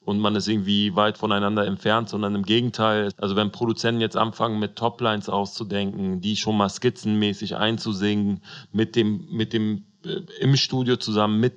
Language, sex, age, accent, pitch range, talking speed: German, male, 30-49, German, 100-115 Hz, 165 wpm